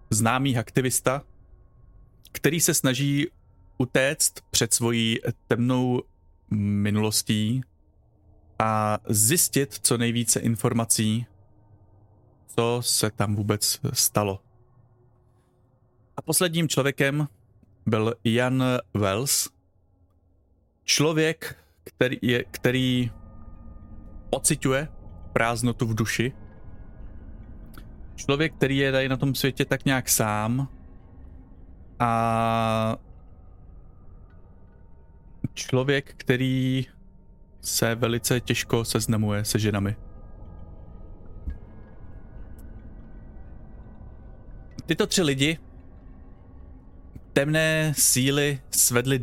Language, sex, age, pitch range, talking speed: Czech, male, 30-49, 100-130 Hz, 70 wpm